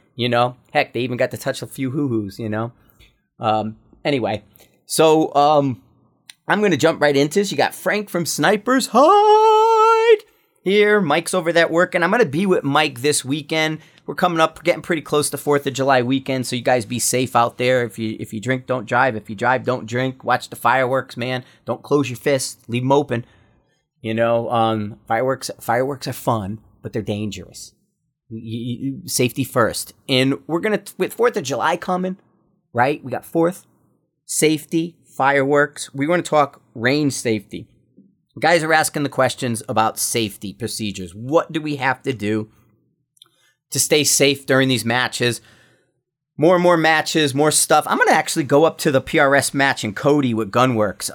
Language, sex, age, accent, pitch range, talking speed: English, male, 30-49, American, 120-155 Hz, 185 wpm